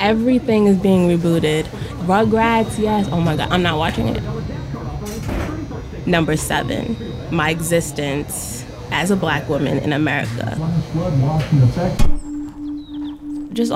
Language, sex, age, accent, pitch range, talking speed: English, female, 20-39, American, 160-240 Hz, 105 wpm